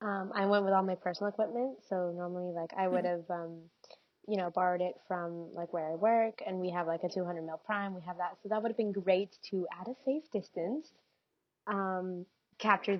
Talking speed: 215 wpm